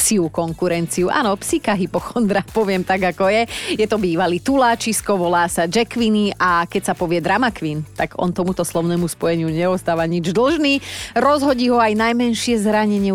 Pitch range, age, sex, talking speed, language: 175-230 Hz, 30-49, female, 165 wpm, Slovak